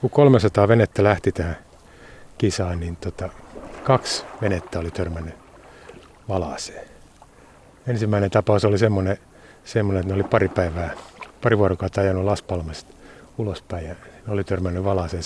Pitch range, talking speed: 95-115 Hz, 130 wpm